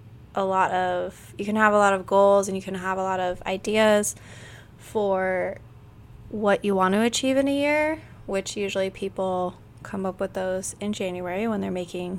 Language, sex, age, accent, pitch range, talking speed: English, female, 20-39, American, 180-210 Hz, 190 wpm